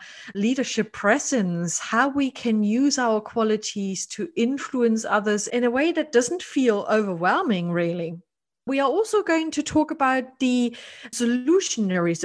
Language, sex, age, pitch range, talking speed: English, female, 30-49, 205-275 Hz, 135 wpm